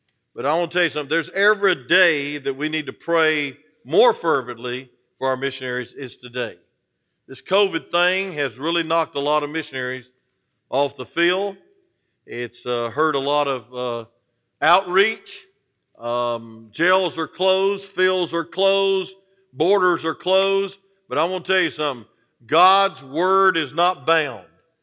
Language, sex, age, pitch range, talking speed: English, male, 50-69, 145-220 Hz, 155 wpm